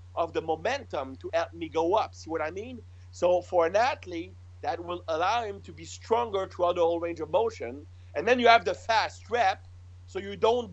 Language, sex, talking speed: English, male, 220 wpm